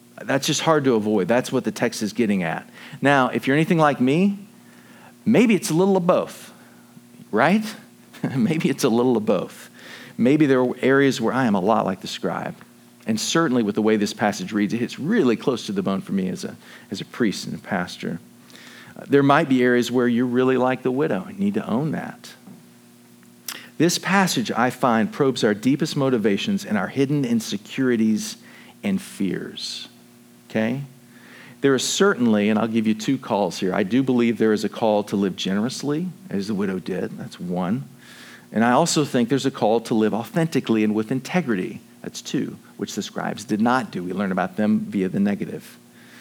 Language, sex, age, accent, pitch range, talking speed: English, male, 40-59, American, 105-175 Hz, 195 wpm